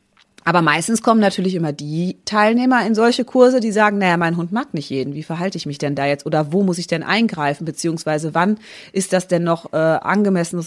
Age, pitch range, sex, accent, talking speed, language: 30-49, 155-195 Hz, female, German, 215 wpm, German